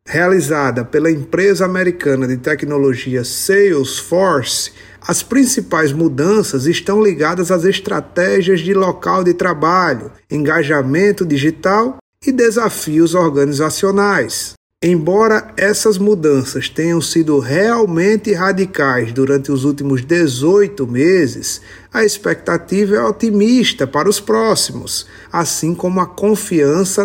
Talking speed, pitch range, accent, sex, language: 100 wpm, 140-200 Hz, Brazilian, male, Portuguese